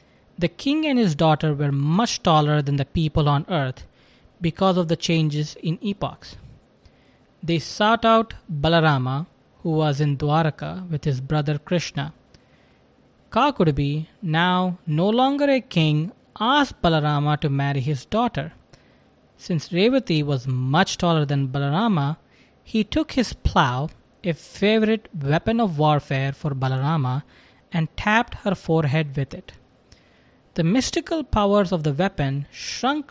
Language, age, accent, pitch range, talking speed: English, 20-39, Indian, 145-190 Hz, 135 wpm